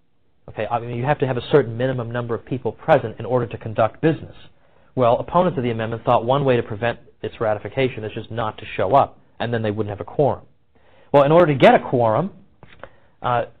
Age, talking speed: 40-59, 220 wpm